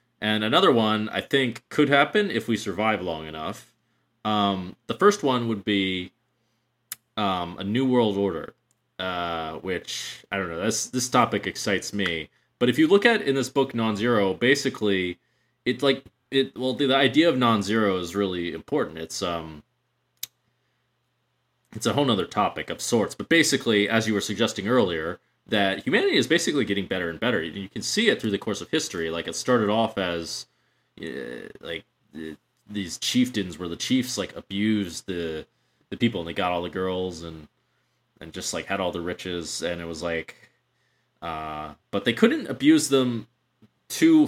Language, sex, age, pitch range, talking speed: English, male, 20-39, 90-125 Hz, 175 wpm